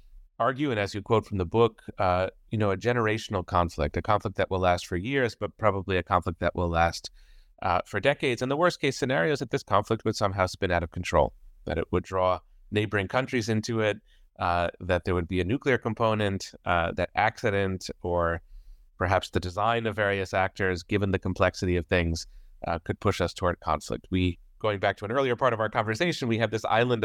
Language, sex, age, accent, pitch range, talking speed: English, male, 30-49, American, 90-110 Hz, 215 wpm